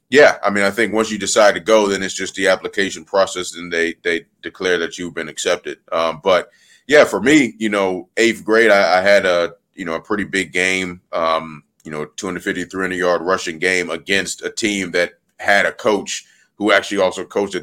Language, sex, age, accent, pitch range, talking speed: English, male, 30-49, American, 85-100 Hz, 210 wpm